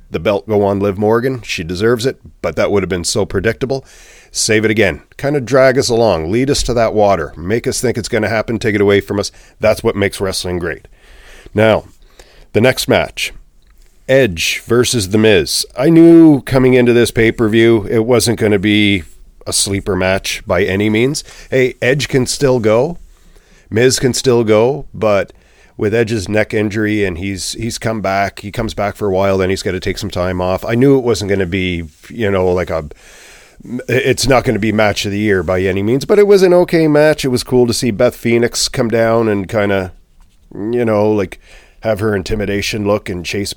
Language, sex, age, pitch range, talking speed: English, male, 40-59, 100-120 Hz, 210 wpm